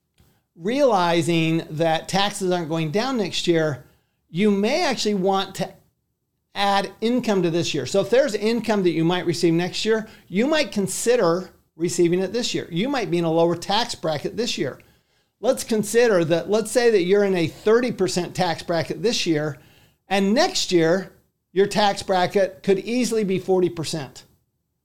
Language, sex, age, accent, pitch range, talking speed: English, male, 50-69, American, 170-210 Hz, 170 wpm